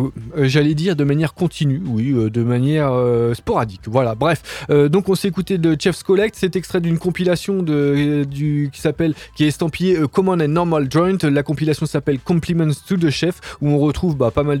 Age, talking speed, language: 20-39, 195 wpm, French